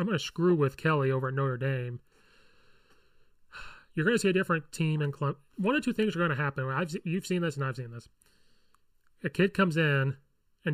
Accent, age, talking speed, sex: American, 30-49, 225 wpm, male